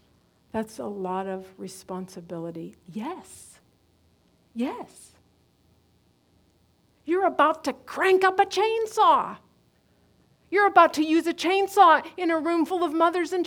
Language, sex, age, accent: English, female, 50-69, American